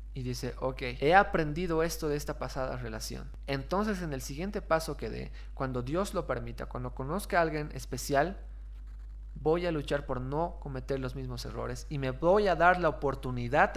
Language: Spanish